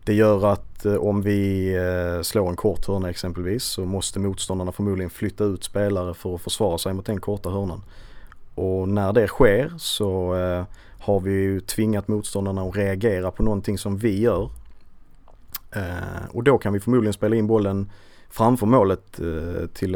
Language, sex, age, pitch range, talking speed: Swedish, male, 30-49, 95-105 Hz, 155 wpm